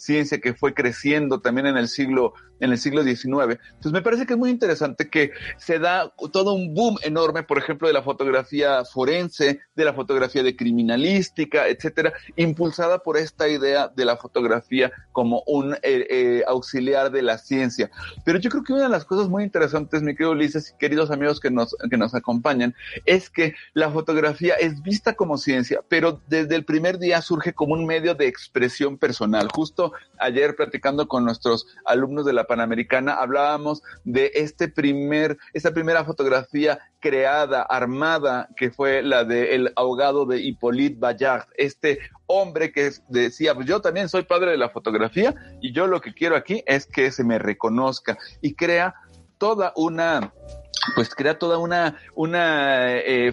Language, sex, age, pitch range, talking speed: Spanish, male, 40-59, 130-165 Hz, 175 wpm